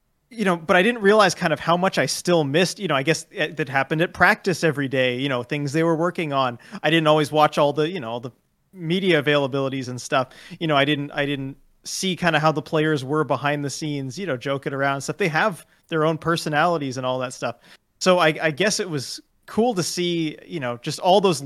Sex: male